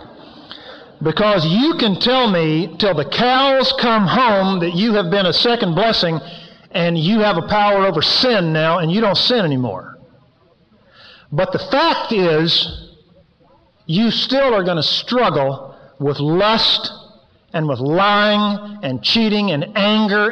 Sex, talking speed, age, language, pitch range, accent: male, 145 wpm, 50-69, English, 180-225 Hz, American